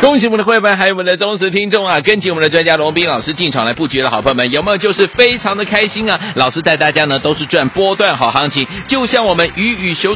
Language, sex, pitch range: Chinese, male, 155-210 Hz